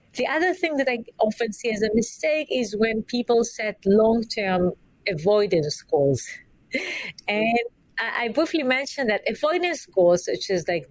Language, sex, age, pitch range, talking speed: English, female, 40-59, 170-230 Hz, 155 wpm